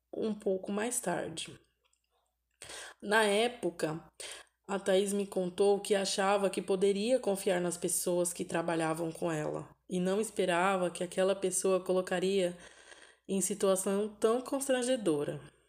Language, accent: Portuguese, Brazilian